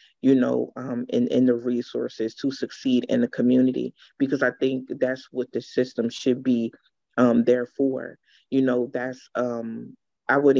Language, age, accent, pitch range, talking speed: English, 30-49, American, 125-135 Hz, 170 wpm